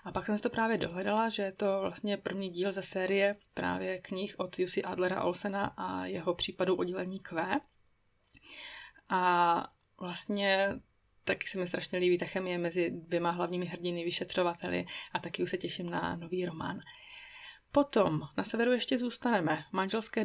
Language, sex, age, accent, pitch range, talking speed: Czech, female, 20-39, native, 180-205 Hz, 160 wpm